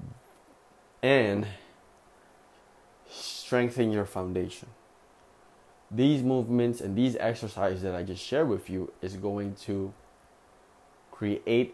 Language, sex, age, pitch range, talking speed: English, male, 20-39, 95-120 Hz, 95 wpm